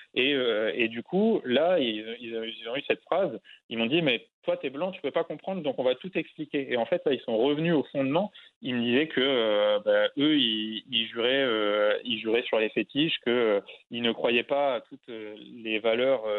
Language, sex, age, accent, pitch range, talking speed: French, male, 20-39, French, 115-145 Hz, 225 wpm